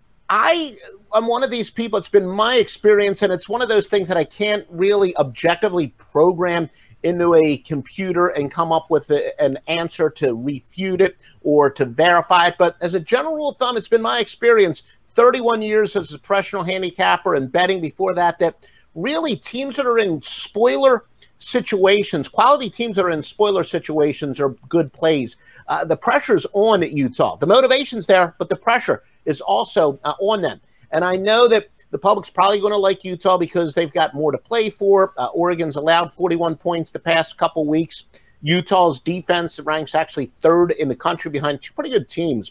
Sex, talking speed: male, 190 wpm